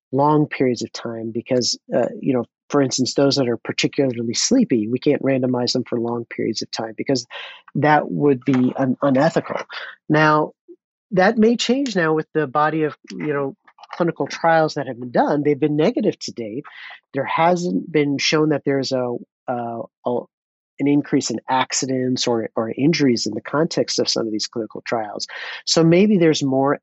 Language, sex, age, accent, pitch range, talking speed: English, male, 40-59, American, 125-155 Hz, 180 wpm